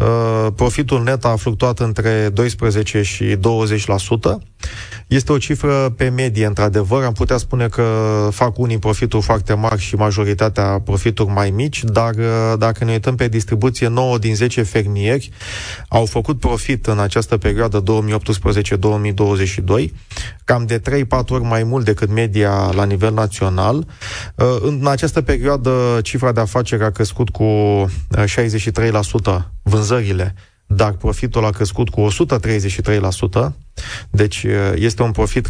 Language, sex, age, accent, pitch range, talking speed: Romanian, male, 30-49, native, 105-125 Hz, 130 wpm